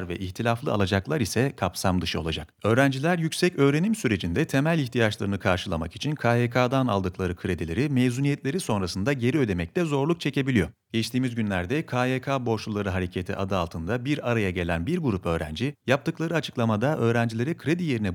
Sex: male